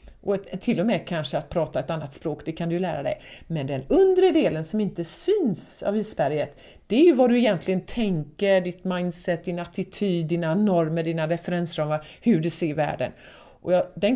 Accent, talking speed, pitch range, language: native, 205 wpm, 155-195 Hz, Swedish